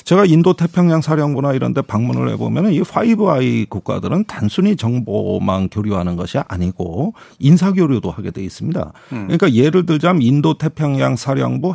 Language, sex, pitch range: Korean, male, 125-190 Hz